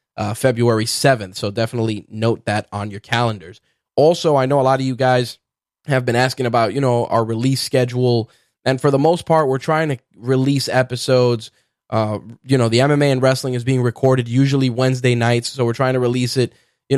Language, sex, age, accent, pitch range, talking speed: English, male, 10-29, American, 115-130 Hz, 200 wpm